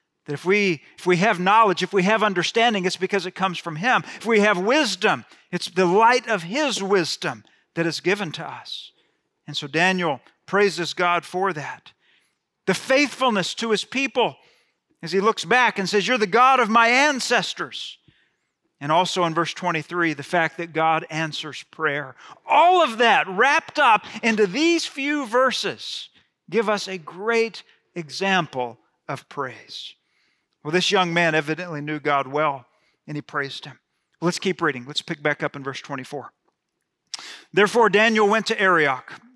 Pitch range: 170-235 Hz